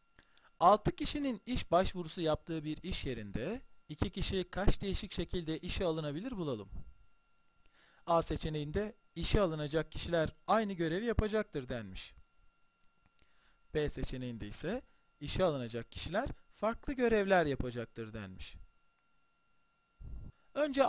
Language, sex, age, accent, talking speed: Turkish, male, 40-59, native, 105 wpm